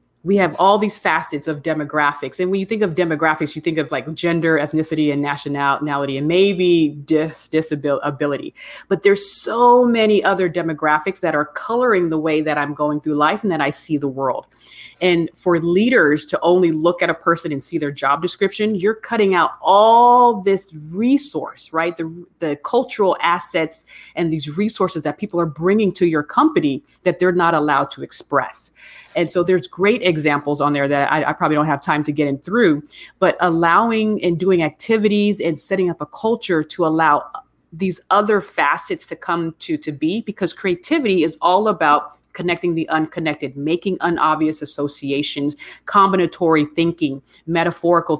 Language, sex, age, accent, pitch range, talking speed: English, female, 30-49, American, 150-190 Hz, 175 wpm